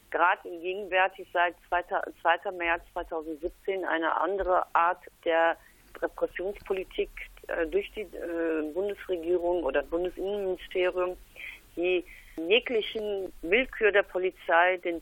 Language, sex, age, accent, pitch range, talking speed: German, female, 40-59, German, 165-195 Hz, 90 wpm